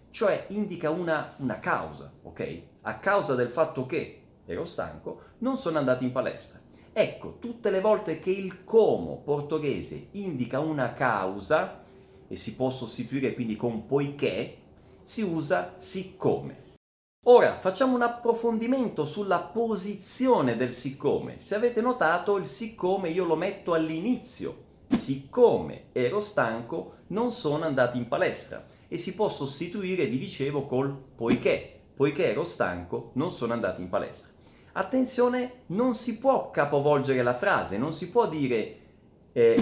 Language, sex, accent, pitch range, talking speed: Italian, male, native, 130-210 Hz, 140 wpm